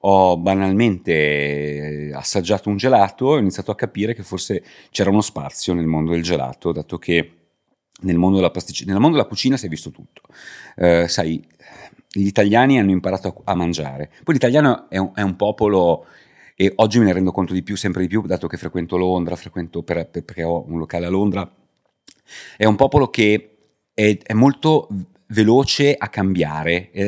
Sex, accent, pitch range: male, native, 85-120 Hz